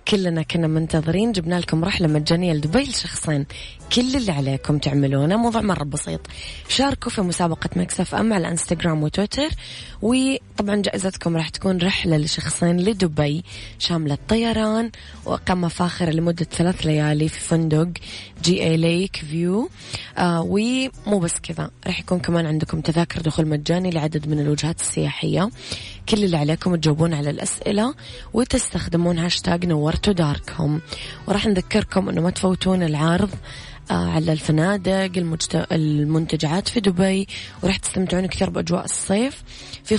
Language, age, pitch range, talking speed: English, 20-39, 155-190 Hz, 125 wpm